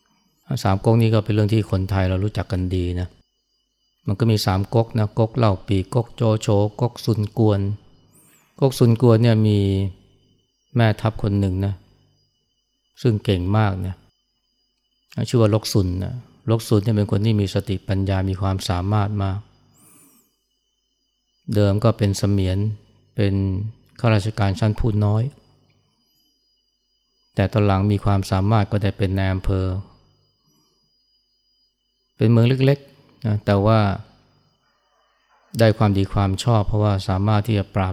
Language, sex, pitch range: Thai, male, 100-115 Hz